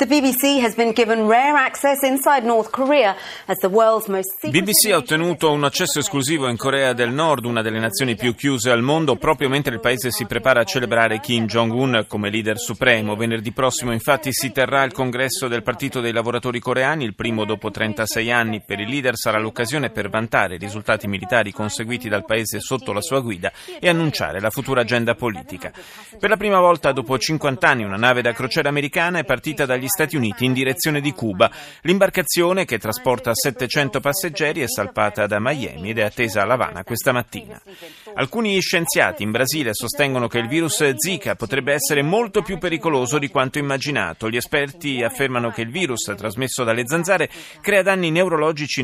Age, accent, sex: 30-49, native, male